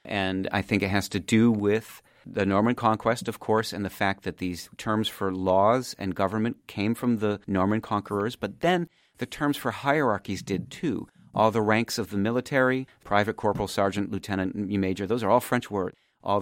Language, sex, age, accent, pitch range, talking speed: English, male, 40-59, American, 95-115 Hz, 195 wpm